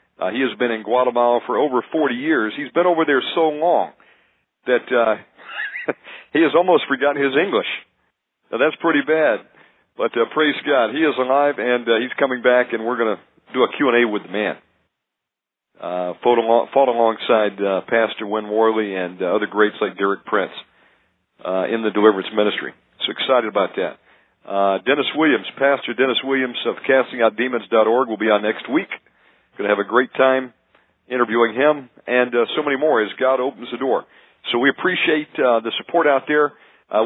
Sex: male